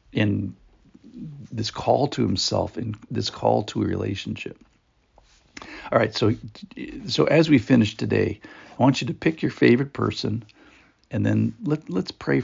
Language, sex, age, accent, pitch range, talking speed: English, male, 60-79, American, 100-125 Hz, 155 wpm